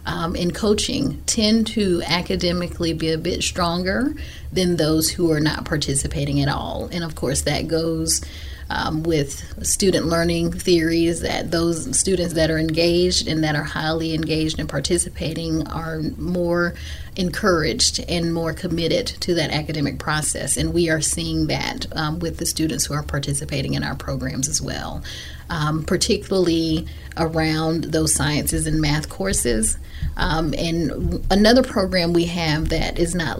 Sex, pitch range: female, 155-180 Hz